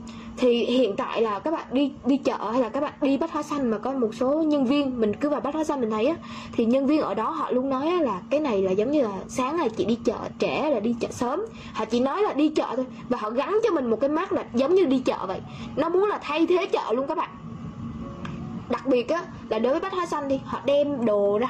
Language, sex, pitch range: Vietnamese, female, 230-305 Hz